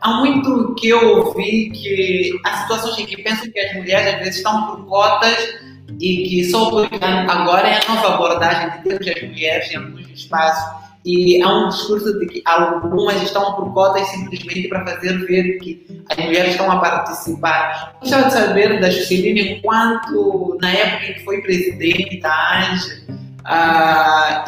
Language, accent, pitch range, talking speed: Portuguese, Brazilian, 180-200 Hz, 180 wpm